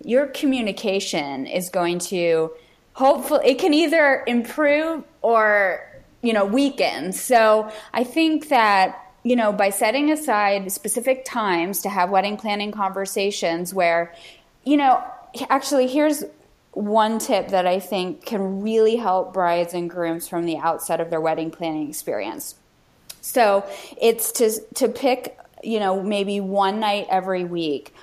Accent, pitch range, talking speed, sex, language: American, 180-230 Hz, 140 wpm, female, English